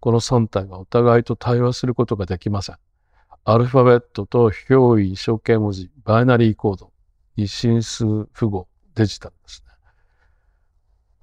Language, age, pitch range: Japanese, 50-69, 95-120 Hz